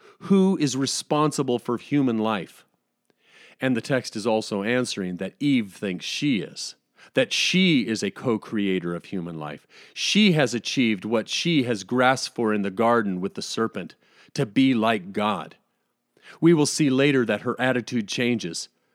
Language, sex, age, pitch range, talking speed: English, male, 40-59, 110-150 Hz, 160 wpm